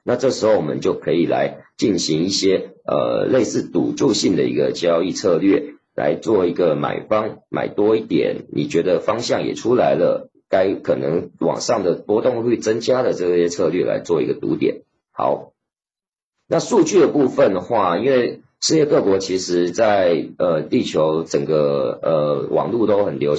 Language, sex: Chinese, male